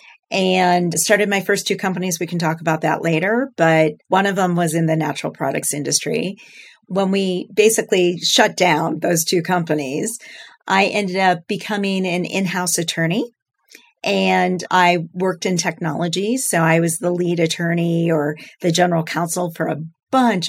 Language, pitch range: English, 165-200 Hz